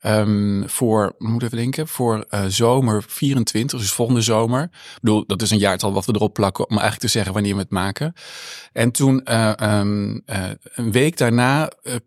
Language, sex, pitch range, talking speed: Dutch, male, 110-125 Hz, 190 wpm